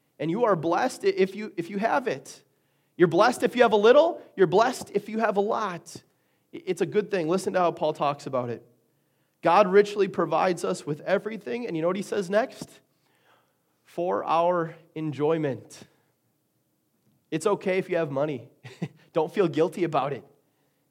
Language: English